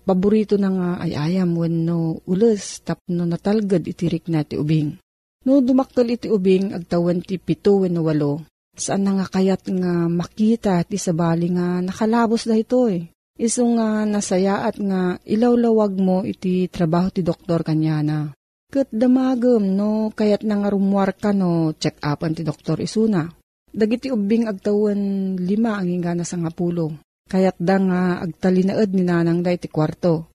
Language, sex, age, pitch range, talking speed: Filipino, female, 40-59, 170-215 Hz, 150 wpm